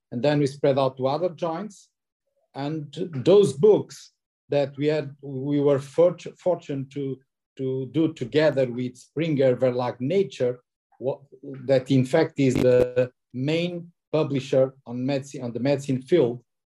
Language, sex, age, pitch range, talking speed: English, male, 50-69, 130-155 Hz, 145 wpm